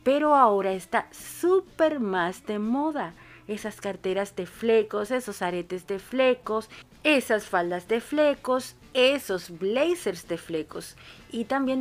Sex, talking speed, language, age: female, 125 wpm, Spanish, 40-59